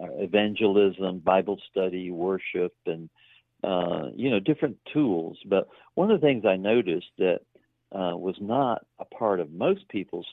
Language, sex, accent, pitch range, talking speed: English, male, American, 95-115 Hz, 150 wpm